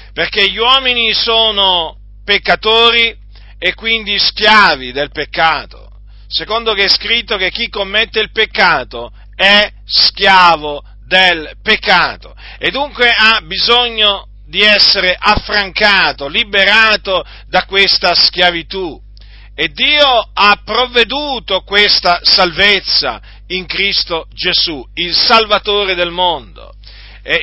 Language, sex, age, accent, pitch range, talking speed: Italian, male, 50-69, native, 170-220 Hz, 105 wpm